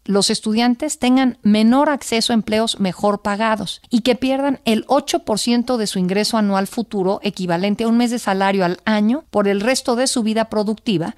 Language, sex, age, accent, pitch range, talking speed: Spanish, female, 50-69, Mexican, 180-235 Hz, 180 wpm